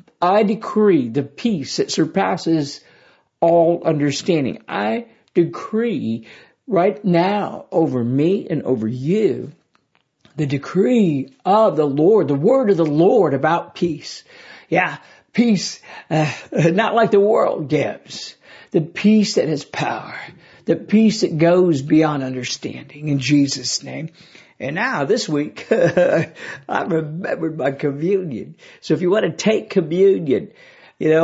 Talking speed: 130 wpm